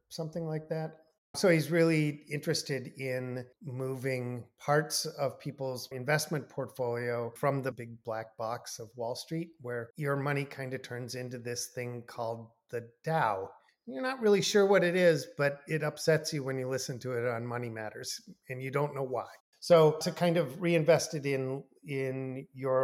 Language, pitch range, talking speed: English, 120-150 Hz, 175 wpm